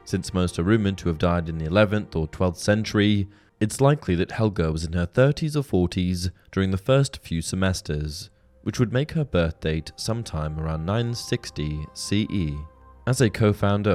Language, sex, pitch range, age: English, male, 85-115 Hz, 20-39